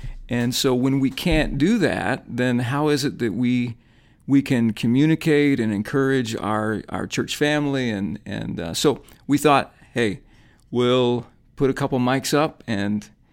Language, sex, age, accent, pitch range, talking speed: English, male, 50-69, American, 115-140 Hz, 160 wpm